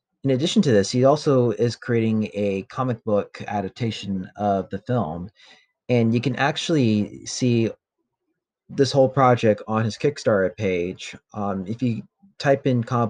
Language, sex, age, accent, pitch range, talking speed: English, male, 30-49, American, 105-125 Hz, 150 wpm